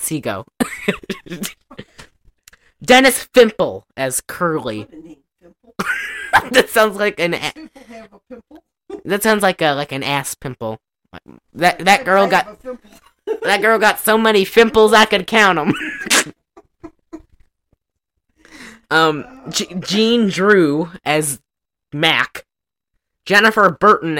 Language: English